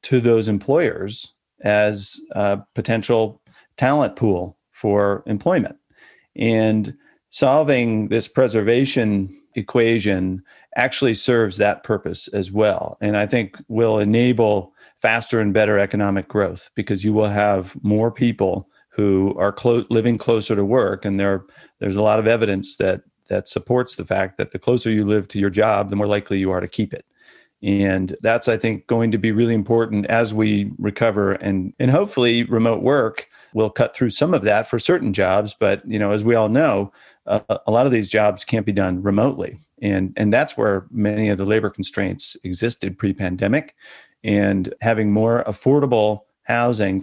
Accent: American